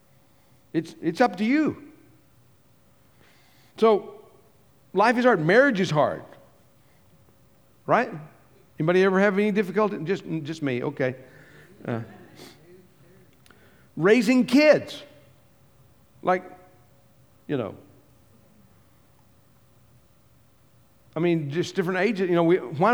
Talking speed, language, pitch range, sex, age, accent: 95 wpm, English, 140-195 Hz, male, 50-69, American